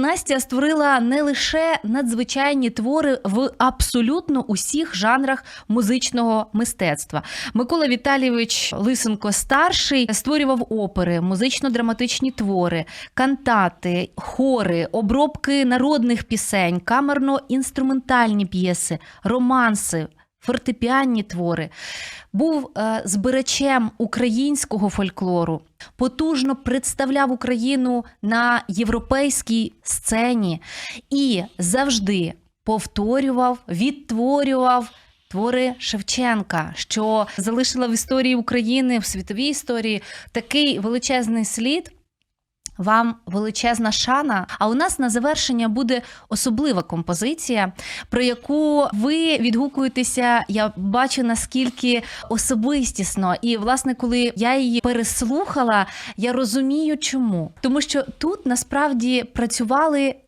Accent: native